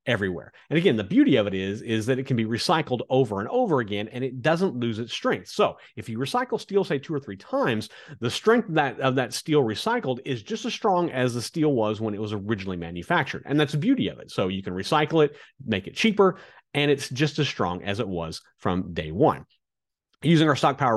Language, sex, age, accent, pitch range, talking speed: English, male, 30-49, American, 105-150 Hz, 240 wpm